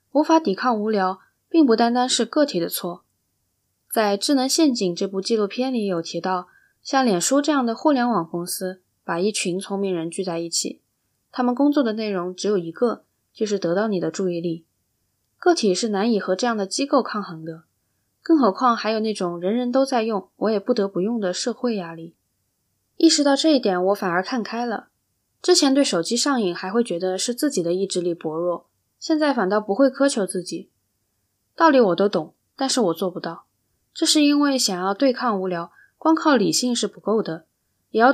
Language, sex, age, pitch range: Chinese, female, 10-29, 180-250 Hz